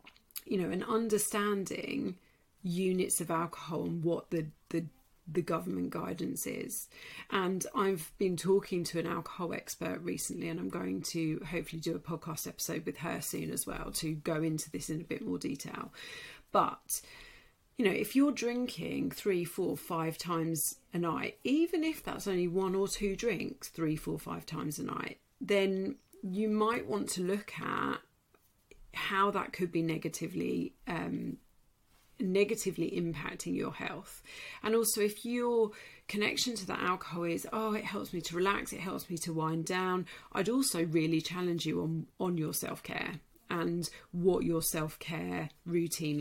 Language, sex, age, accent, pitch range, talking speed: English, female, 40-59, British, 160-200 Hz, 160 wpm